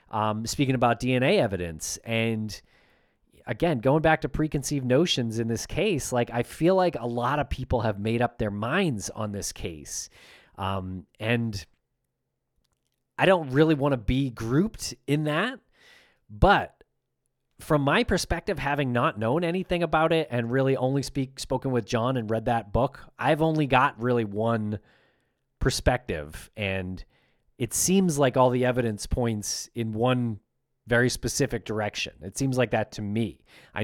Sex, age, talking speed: male, 30-49, 160 wpm